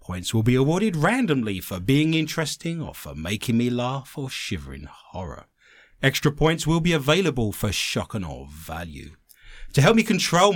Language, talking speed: English, 175 wpm